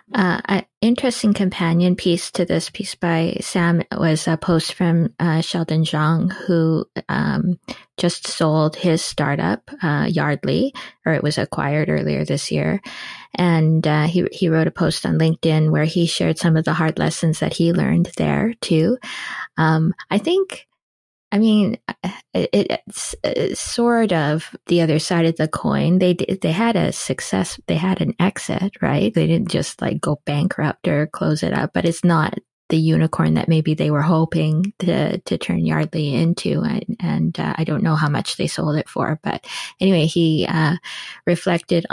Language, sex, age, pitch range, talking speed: English, female, 20-39, 160-190 Hz, 175 wpm